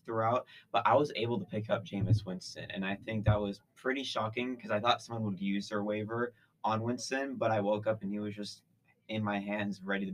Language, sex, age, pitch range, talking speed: English, male, 20-39, 100-120 Hz, 235 wpm